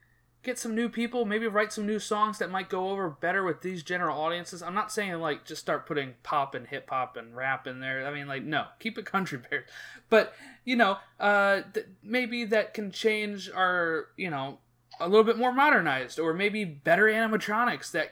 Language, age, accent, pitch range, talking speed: English, 20-39, American, 135-200 Hz, 205 wpm